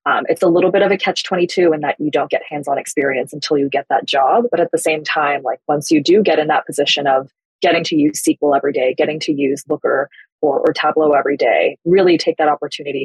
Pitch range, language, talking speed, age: 145-175 Hz, English, 245 wpm, 20-39